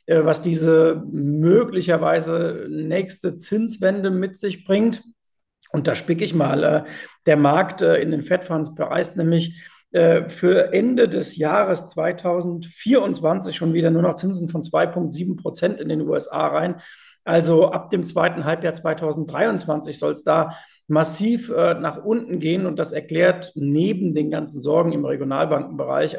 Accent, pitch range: German, 155-185 Hz